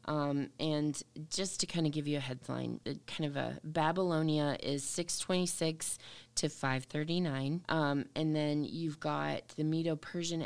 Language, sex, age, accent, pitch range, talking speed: English, female, 20-39, American, 145-170 Hz, 170 wpm